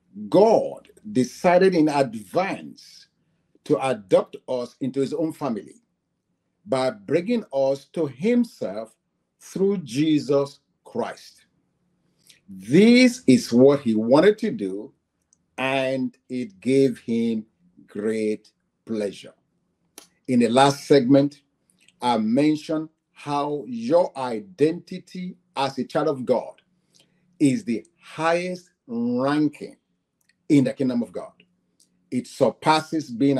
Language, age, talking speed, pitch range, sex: English, 50-69, 105 wpm, 130-180 Hz, male